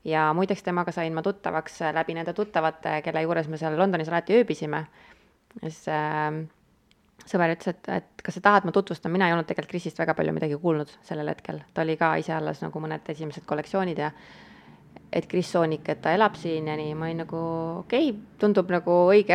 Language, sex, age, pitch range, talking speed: English, female, 20-39, 155-180 Hz, 200 wpm